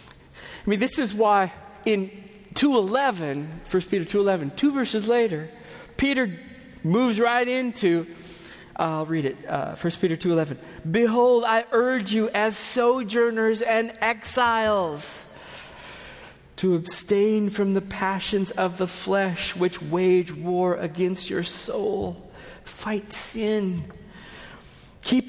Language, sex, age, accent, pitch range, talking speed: English, male, 40-59, American, 185-230 Hz, 120 wpm